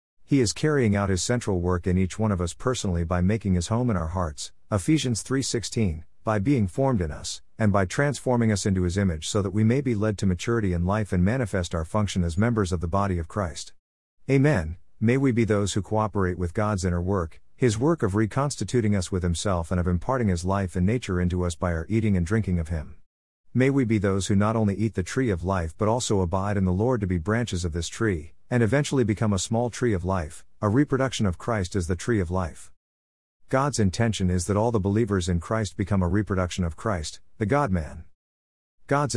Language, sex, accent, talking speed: English, male, American, 225 wpm